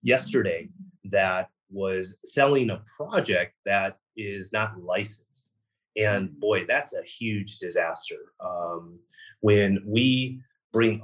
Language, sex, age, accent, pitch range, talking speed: English, male, 30-49, American, 100-120 Hz, 110 wpm